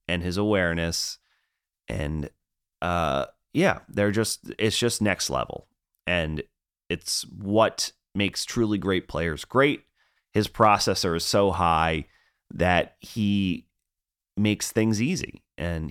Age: 30-49